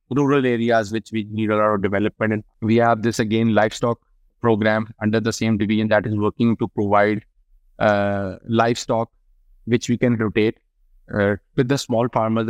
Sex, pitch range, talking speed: male, 105-115 Hz, 175 wpm